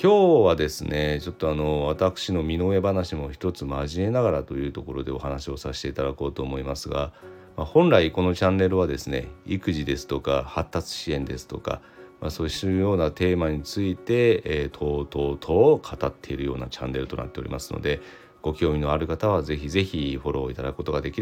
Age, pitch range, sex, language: 40-59, 70-95 Hz, male, Japanese